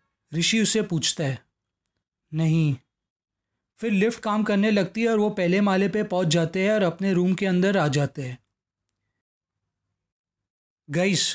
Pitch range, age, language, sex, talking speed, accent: 135-190 Hz, 20-39, Hindi, male, 150 wpm, native